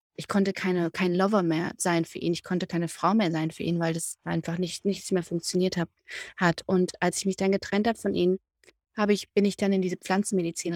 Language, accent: German, German